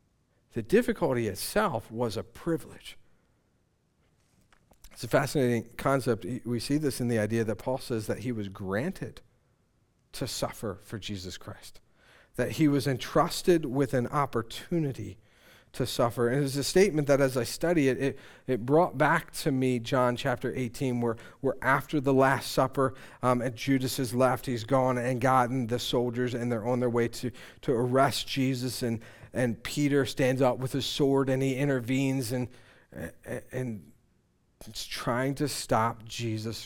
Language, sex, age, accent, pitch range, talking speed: English, male, 50-69, American, 115-135 Hz, 160 wpm